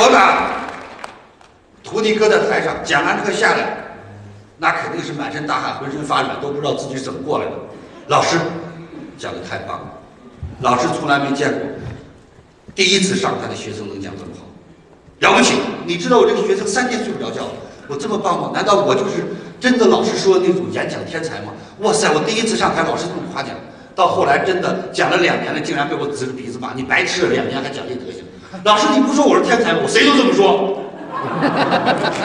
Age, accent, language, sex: 50-69, native, Chinese, male